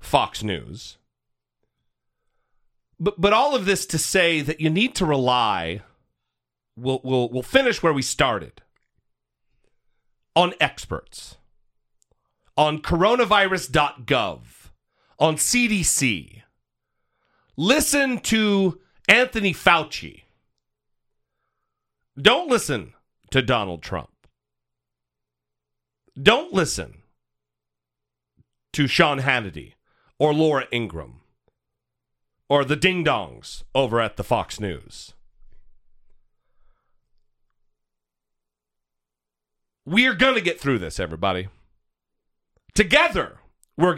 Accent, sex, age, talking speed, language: American, male, 40-59, 85 wpm, English